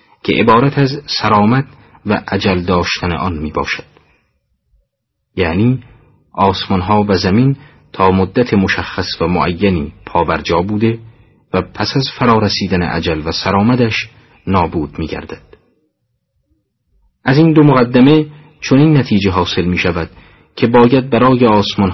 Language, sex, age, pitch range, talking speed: Persian, male, 40-59, 90-120 Hz, 130 wpm